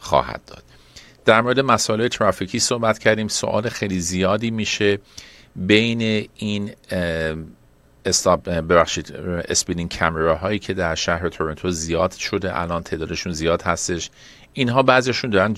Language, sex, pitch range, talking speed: Persian, male, 85-105 Hz, 110 wpm